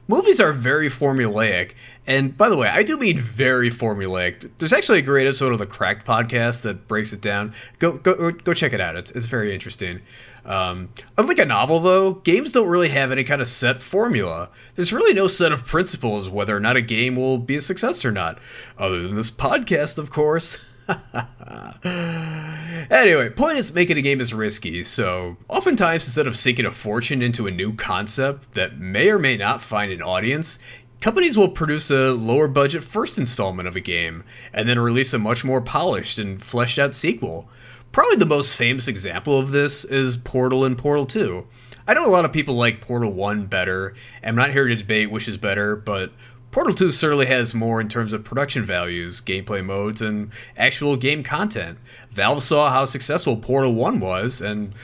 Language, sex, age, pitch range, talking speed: English, male, 30-49, 110-145 Hz, 195 wpm